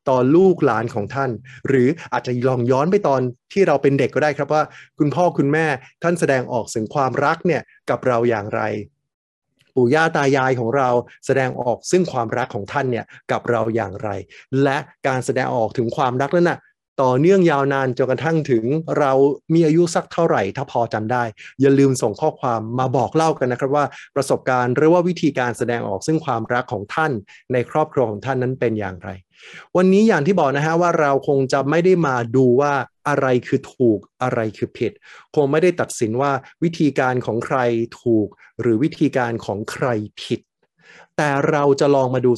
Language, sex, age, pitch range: Thai, male, 20-39, 120-155 Hz